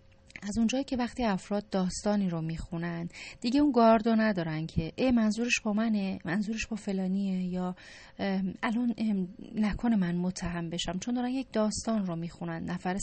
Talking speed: 160 wpm